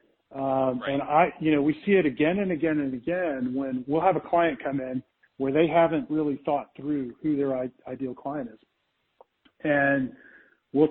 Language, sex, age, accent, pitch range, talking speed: English, male, 40-59, American, 130-160 Hz, 180 wpm